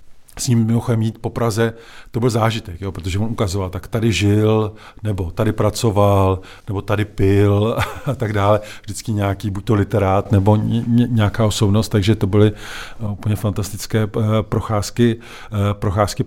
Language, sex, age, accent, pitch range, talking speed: Czech, male, 50-69, native, 105-125 Hz, 150 wpm